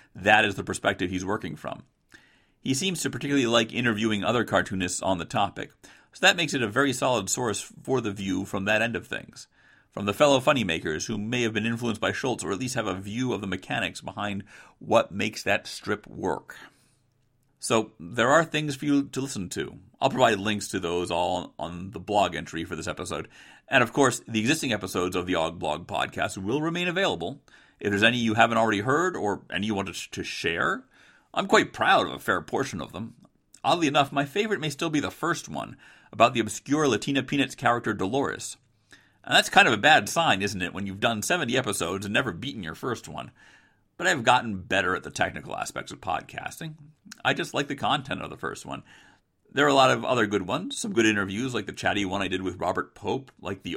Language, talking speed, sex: English, 220 wpm, male